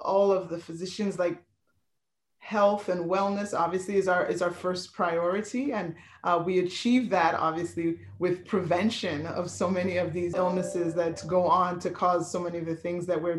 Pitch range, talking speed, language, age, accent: 175-195 Hz, 185 wpm, English, 30-49, American